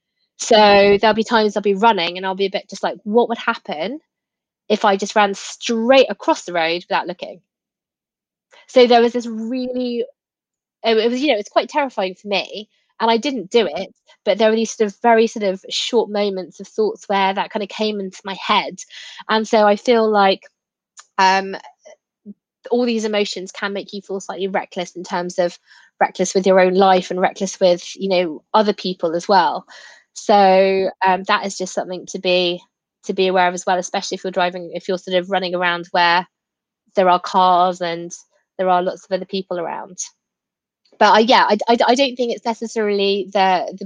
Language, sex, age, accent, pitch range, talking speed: English, female, 20-39, British, 185-220 Hz, 200 wpm